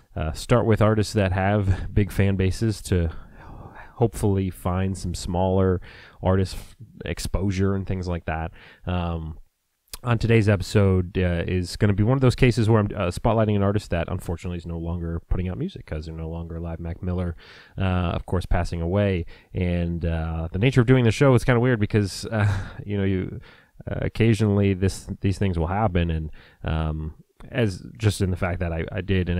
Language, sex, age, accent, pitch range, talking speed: English, male, 30-49, American, 85-105 Hz, 195 wpm